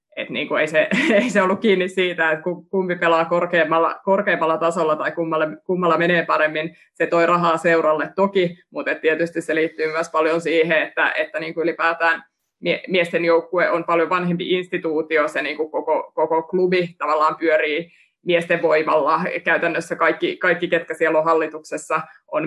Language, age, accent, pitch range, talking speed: Finnish, 20-39, native, 160-175 Hz, 165 wpm